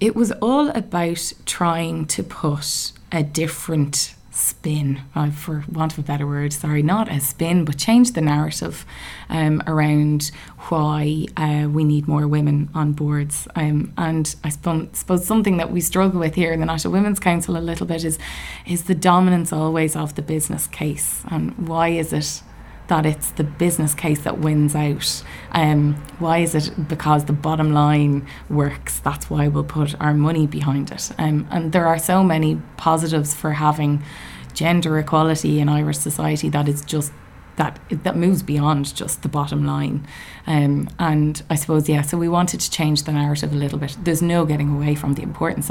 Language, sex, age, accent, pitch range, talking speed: English, female, 20-39, Irish, 145-165 Hz, 180 wpm